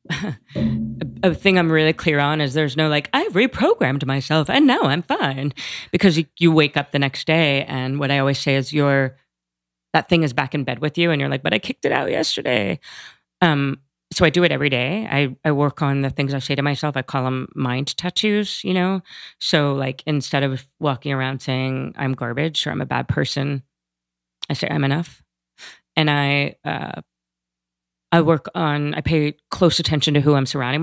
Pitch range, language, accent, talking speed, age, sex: 130-160 Hz, English, American, 205 wpm, 30-49, female